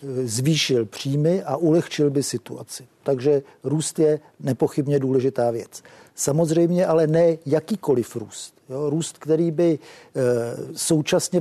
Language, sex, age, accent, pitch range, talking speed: Czech, male, 50-69, native, 130-165 Hz, 110 wpm